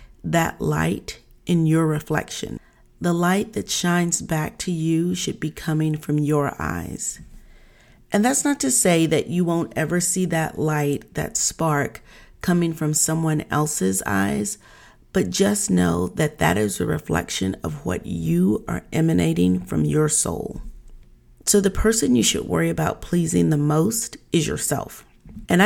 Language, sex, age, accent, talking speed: English, female, 40-59, American, 155 wpm